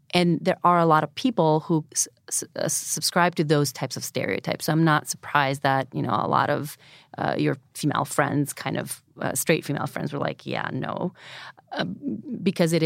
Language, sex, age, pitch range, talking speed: English, female, 30-49, 145-185 Hz, 190 wpm